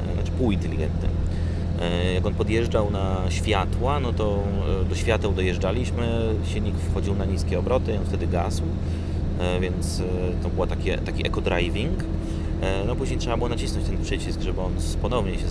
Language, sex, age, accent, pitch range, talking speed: Polish, male, 30-49, native, 80-95 Hz, 135 wpm